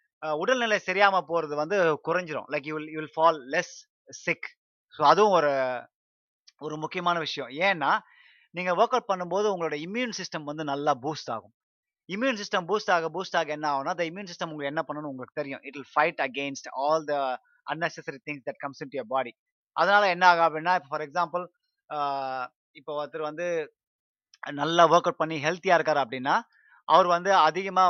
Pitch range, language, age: 145-185 Hz, Tamil, 30-49